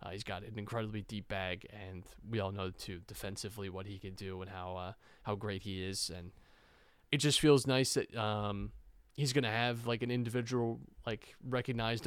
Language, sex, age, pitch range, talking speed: English, male, 20-39, 100-120 Hz, 200 wpm